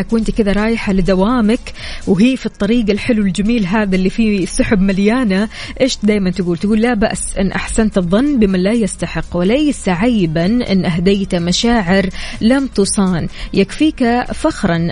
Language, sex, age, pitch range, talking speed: Arabic, female, 20-39, 190-235 Hz, 140 wpm